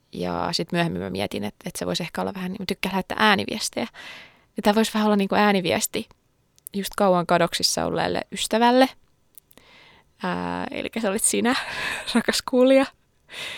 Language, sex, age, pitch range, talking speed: English, female, 20-39, 185-225 Hz, 150 wpm